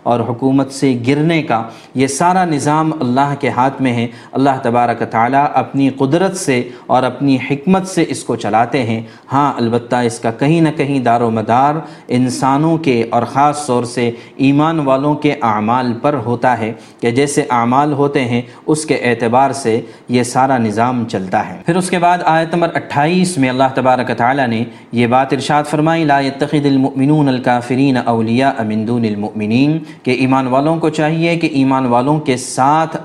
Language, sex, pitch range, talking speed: Urdu, male, 120-150 Hz, 175 wpm